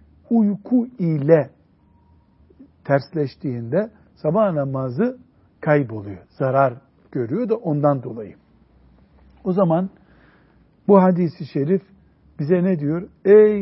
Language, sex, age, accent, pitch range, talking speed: Turkish, male, 60-79, native, 120-195 Hz, 90 wpm